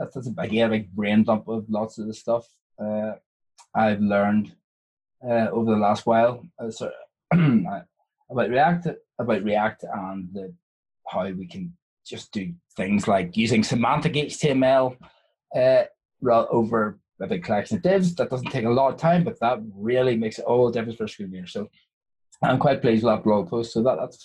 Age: 20-39